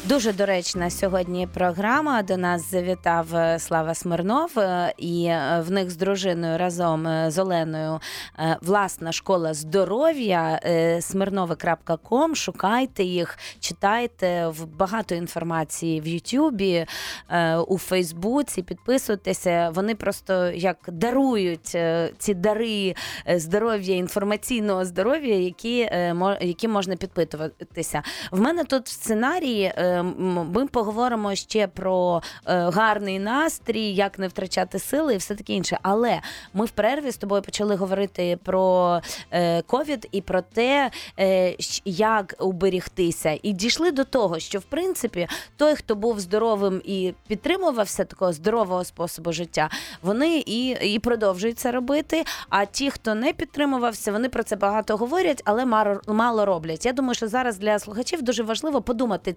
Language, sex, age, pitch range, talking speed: Ukrainian, female, 20-39, 175-230 Hz, 125 wpm